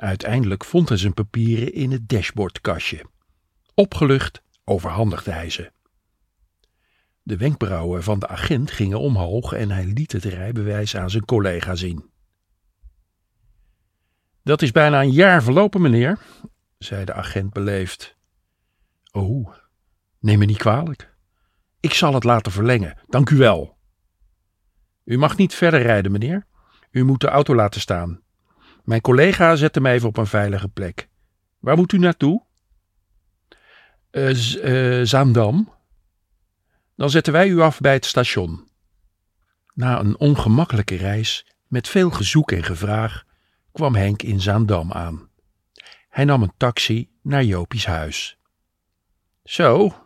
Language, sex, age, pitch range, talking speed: Dutch, male, 50-69, 95-125 Hz, 135 wpm